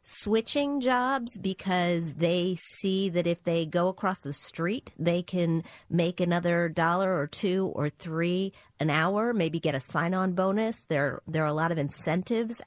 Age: 40-59